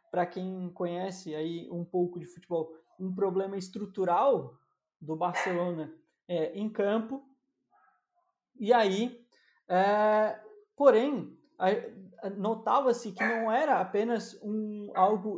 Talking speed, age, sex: 105 wpm, 20-39, male